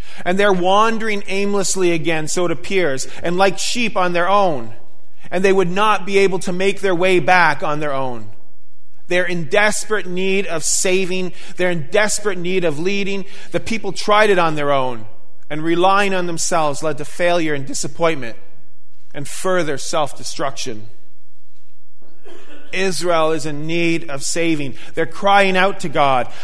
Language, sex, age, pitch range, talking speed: English, male, 30-49, 160-205 Hz, 160 wpm